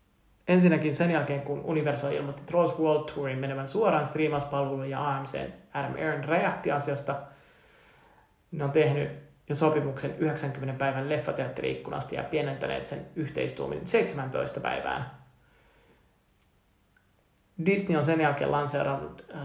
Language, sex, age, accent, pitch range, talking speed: Finnish, male, 30-49, native, 140-165 Hz, 110 wpm